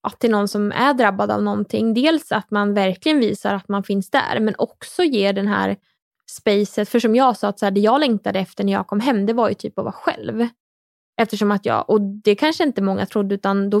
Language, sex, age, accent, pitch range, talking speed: English, female, 20-39, Norwegian, 200-235 Hz, 245 wpm